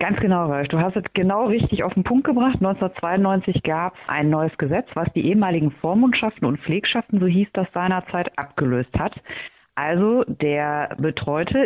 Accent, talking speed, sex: German, 165 wpm, female